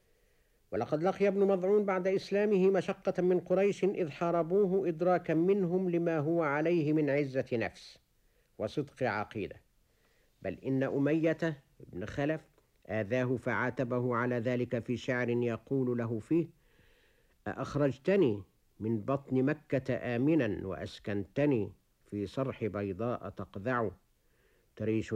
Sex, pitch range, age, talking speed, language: male, 115-165 Hz, 60-79, 110 wpm, Arabic